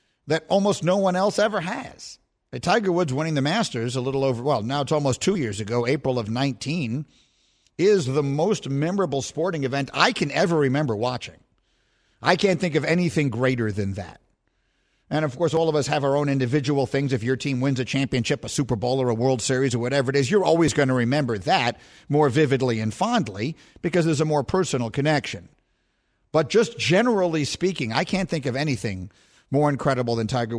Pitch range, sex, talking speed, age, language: 125-170 Hz, male, 200 wpm, 50-69, English